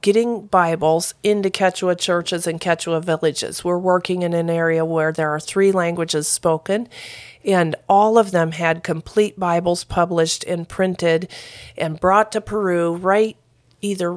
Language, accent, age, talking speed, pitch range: English, American, 40-59, 150 wpm, 165-190 Hz